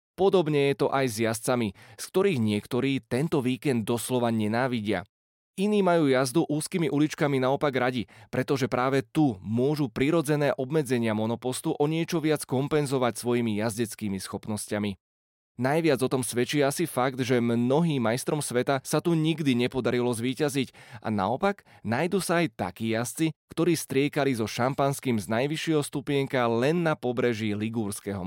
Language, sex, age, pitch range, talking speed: Slovak, male, 20-39, 115-140 Hz, 140 wpm